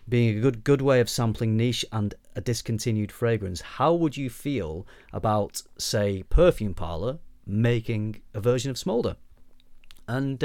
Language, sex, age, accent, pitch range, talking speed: English, male, 30-49, British, 100-135 Hz, 150 wpm